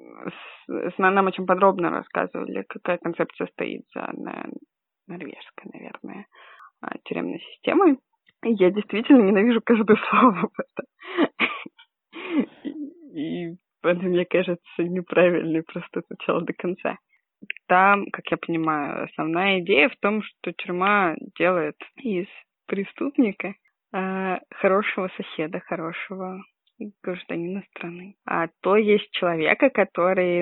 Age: 20-39